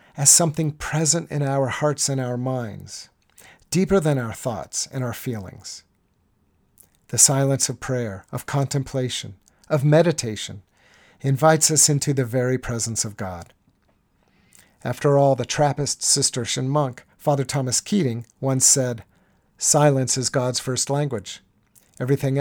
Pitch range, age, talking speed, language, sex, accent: 110-145 Hz, 50-69, 130 wpm, English, male, American